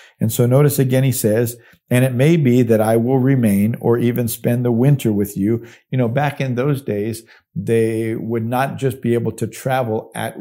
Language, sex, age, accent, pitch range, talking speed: English, male, 50-69, American, 105-130 Hz, 210 wpm